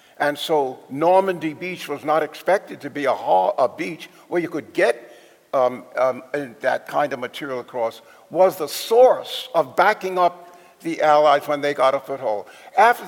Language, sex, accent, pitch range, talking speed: English, male, American, 150-195 Hz, 175 wpm